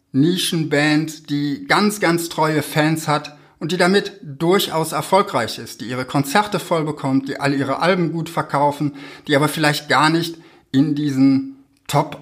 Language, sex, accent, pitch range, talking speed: German, male, German, 120-155 Hz, 155 wpm